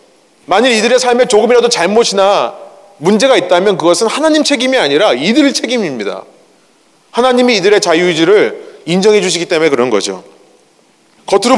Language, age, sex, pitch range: Korean, 30-49, male, 180-250 Hz